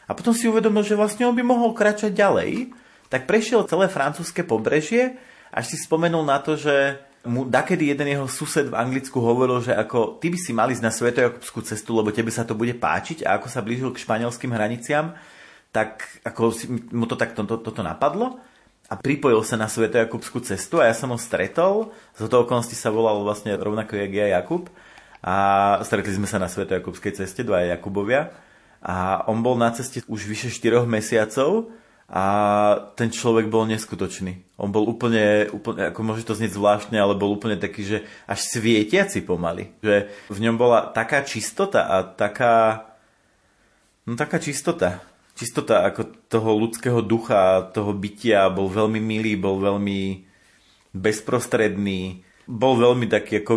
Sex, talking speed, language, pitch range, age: male, 165 wpm, Slovak, 105-135 Hz, 30-49